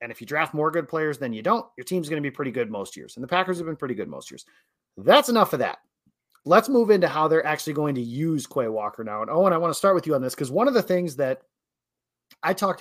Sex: male